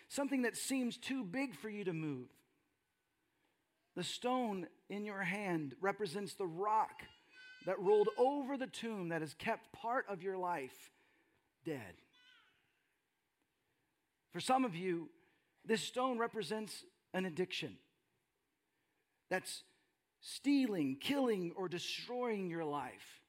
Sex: male